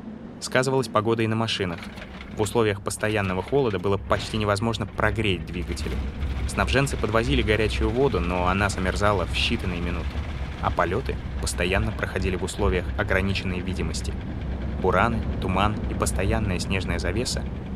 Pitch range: 85-110 Hz